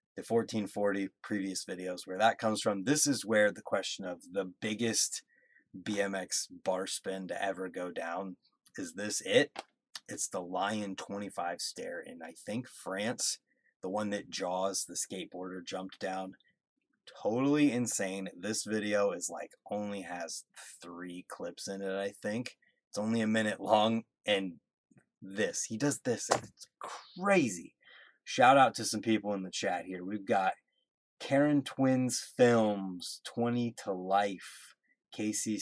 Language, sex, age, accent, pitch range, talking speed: English, male, 30-49, American, 95-115 Hz, 145 wpm